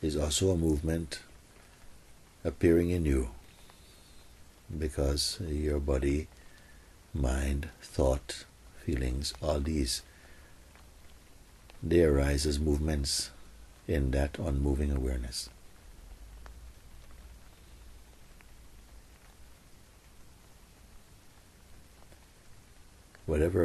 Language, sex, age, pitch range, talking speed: English, male, 60-79, 65-80 Hz, 60 wpm